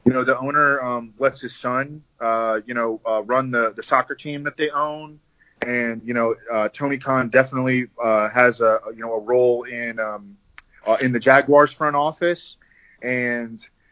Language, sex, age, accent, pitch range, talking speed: English, male, 30-49, American, 115-145 Hz, 185 wpm